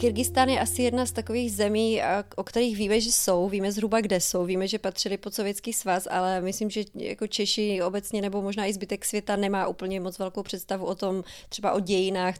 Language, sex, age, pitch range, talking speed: Czech, female, 20-39, 190-215 Hz, 210 wpm